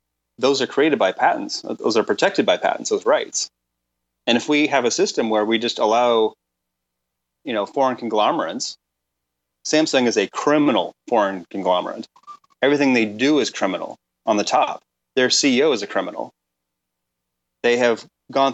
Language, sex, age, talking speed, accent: English, male, 30-49, 155 wpm, American